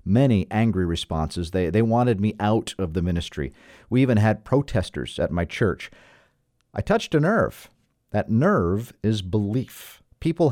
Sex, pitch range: male, 95-125 Hz